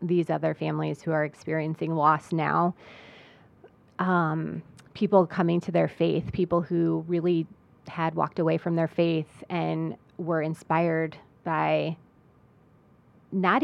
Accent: American